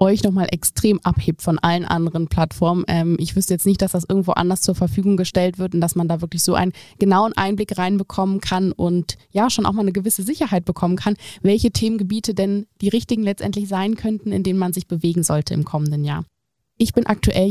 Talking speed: 210 wpm